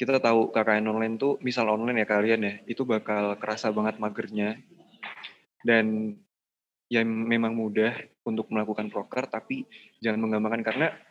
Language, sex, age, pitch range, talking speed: Indonesian, male, 20-39, 105-120 Hz, 140 wpm